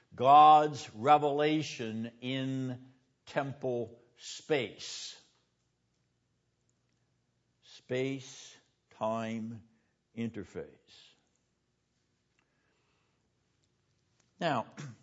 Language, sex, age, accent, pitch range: English, male, 60-79, American, 120-150 Hz